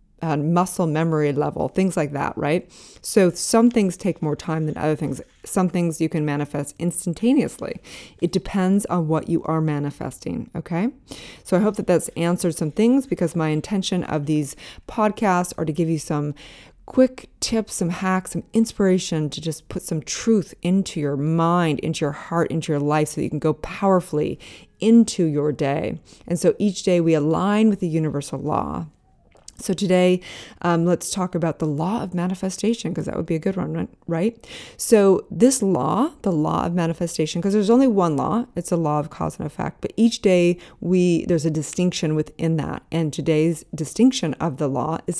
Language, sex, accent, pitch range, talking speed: English, female, American, 155-190 Hz, 185 wpm